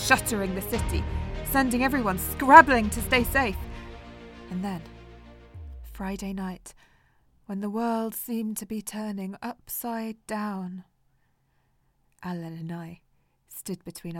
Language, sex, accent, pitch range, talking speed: English, female, British, 175-235 Hz, 115 wpm